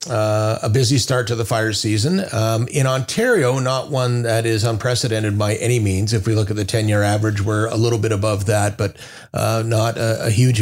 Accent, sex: American, male